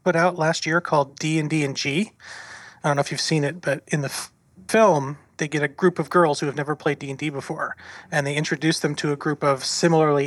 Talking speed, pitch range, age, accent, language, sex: 240 wpm, 135-165 Hz, 30-49, American, English, male